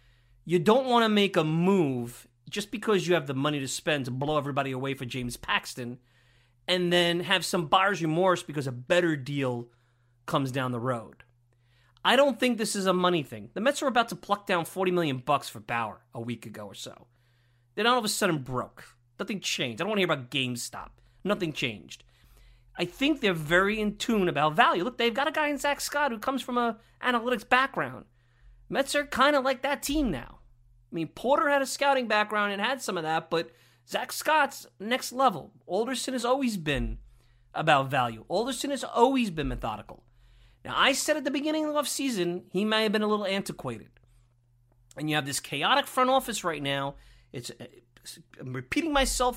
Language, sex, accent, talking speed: English, male, American, 200 wpm